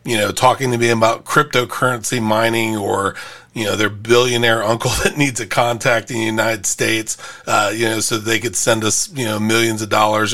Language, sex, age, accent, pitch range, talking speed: English, male, 40-59, American, 110-130 Hz, 205 wpm